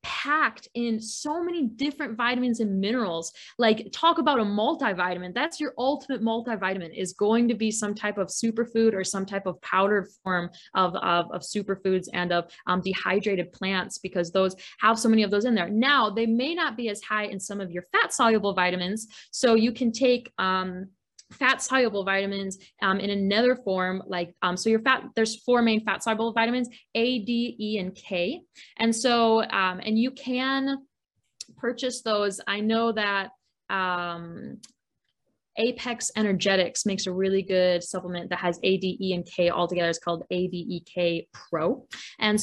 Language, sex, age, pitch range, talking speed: English, female, 10-29, 180-225 Hz, 170 wpm